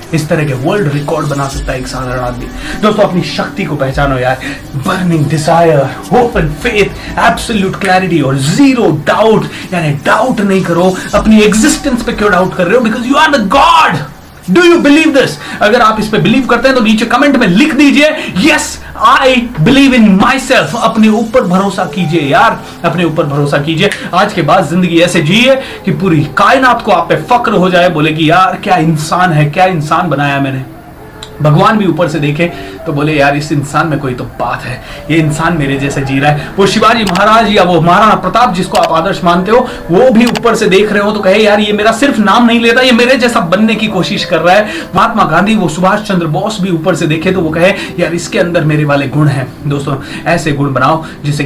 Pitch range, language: 155-215 Hz, Hindi